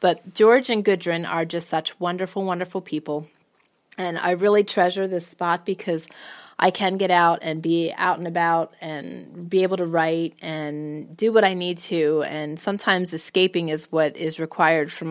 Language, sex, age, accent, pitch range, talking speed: English, female, 30-49, American, 160-190 Hz, 180 wpm